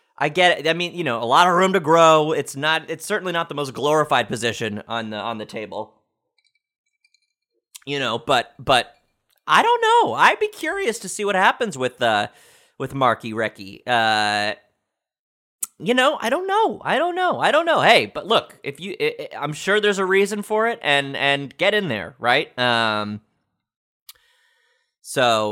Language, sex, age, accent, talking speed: English, male, 30-49, American, 190 wpm